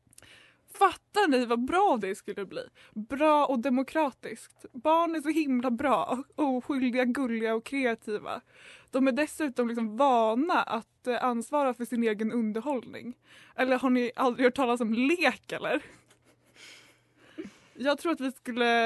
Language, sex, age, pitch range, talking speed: Swedish, female, 20-39, 225-260 Hz, 145 wpm